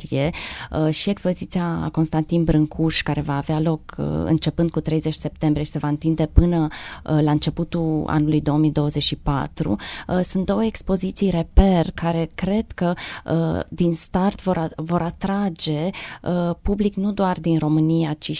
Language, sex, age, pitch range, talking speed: Romanian, female, 20-39, 155-190 Hz, 125 wpm